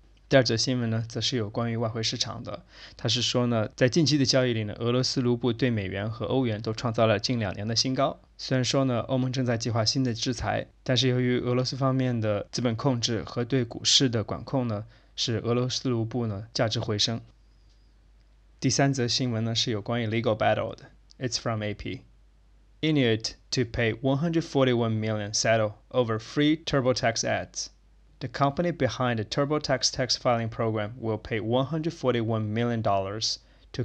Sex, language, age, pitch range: male, Chinese, 20-39, 110-130 Hz